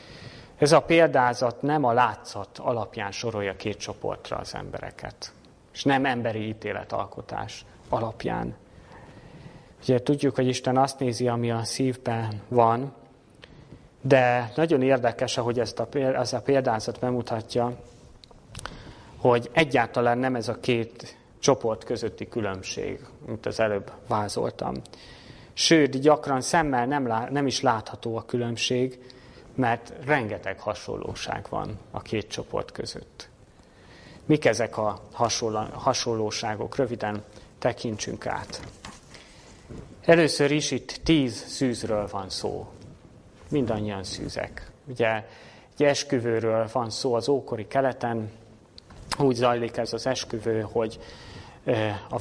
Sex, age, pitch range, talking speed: male, 30-49, 110-130 Hz, 110 wpm